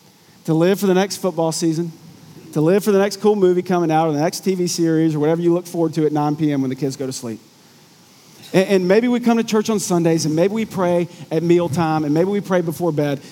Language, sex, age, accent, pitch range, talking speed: English, male, 40-59, American, 155-195 Hz, 255 wpm